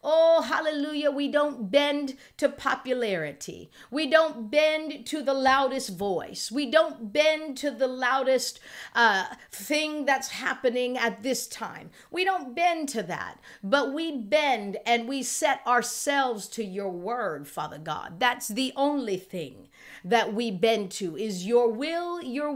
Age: 50-69